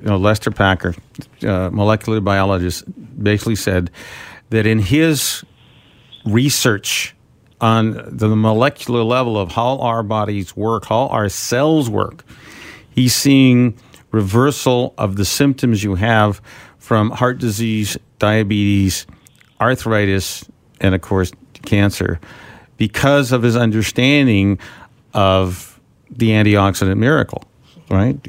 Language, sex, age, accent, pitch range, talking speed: English, male, 50-69, American, 100-125 Hz, 105 wpm